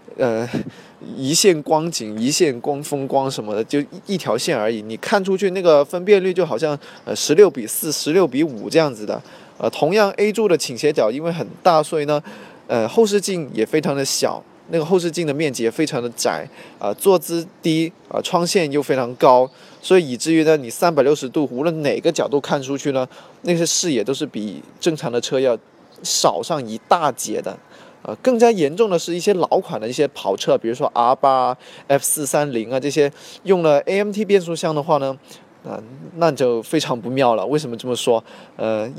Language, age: Chinese, 20-39